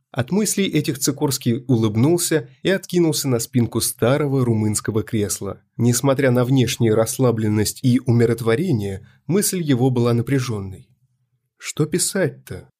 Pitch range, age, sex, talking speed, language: 115-150 Hz, 30-49, male, 115 wpm, Russian